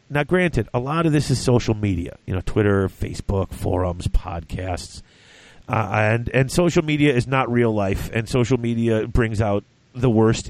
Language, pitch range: English, 105-140 Hz